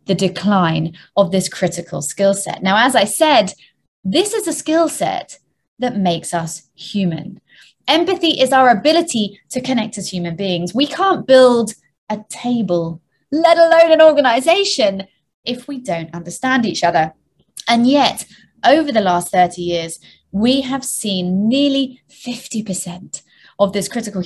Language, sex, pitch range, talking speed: English, female, 180-255 Hz, 145 wpm